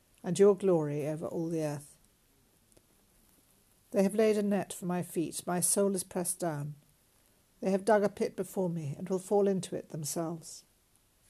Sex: female